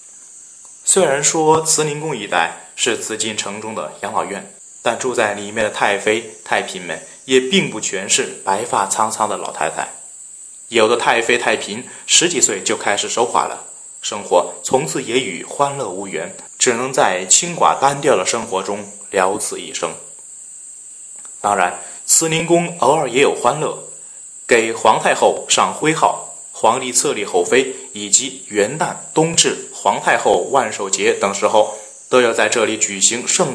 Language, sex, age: Chinese, male, 20-39